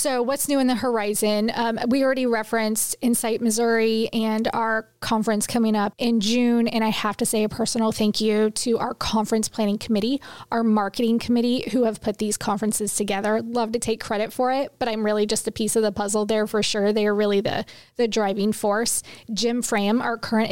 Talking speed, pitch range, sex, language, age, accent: 210 wpm, 215-235 Hz, female, English, 20-39, American